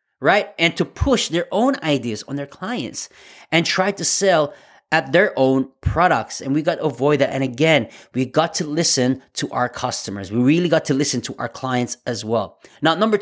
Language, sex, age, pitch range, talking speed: English, male, 30-49, 125-155 Hz, 205 wpm